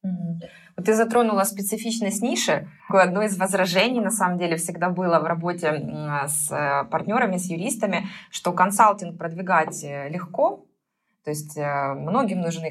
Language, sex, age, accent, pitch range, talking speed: Russian, female, 20-39, native, 155-195 Hz, 125 wpm